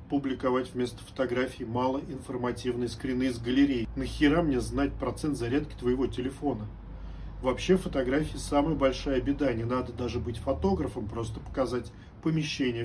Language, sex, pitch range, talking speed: Russian, male, 115-135 Hz, 125 wpm